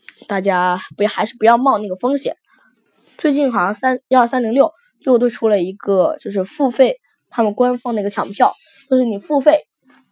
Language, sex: Chinese, female